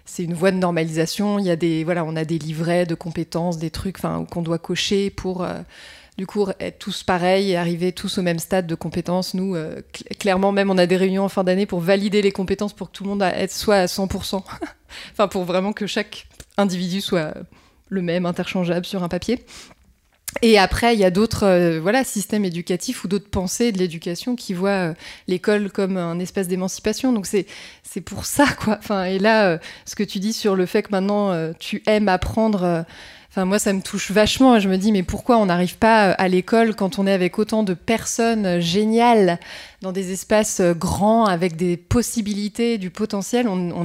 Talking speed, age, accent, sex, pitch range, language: 205 wpm, 20-39, French, female, 180-215 Hz, French